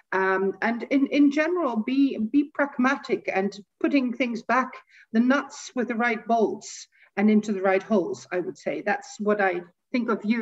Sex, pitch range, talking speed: female, 190-245 Hz, 185 wpm